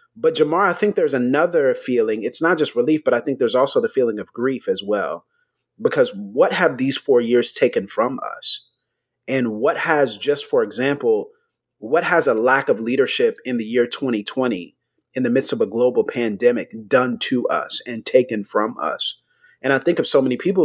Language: English